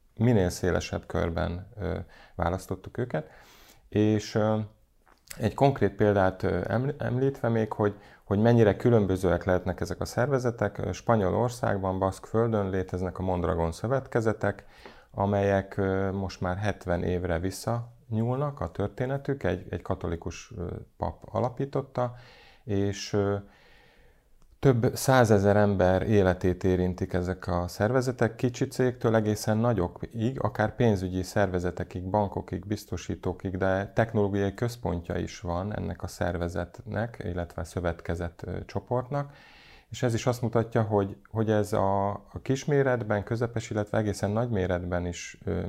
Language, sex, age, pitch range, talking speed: Hungarian, male, 30-49, 90-115 Hz, 120 wpm